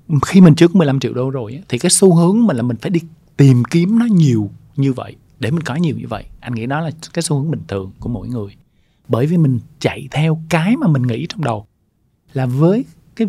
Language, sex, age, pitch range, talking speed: Vietnamese, male, 20-39, 120-160 Hz, 245 wpm